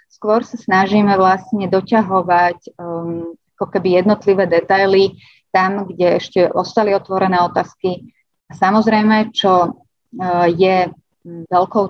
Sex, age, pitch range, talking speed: female, 30-49, 180-210 Hz, 110 wpm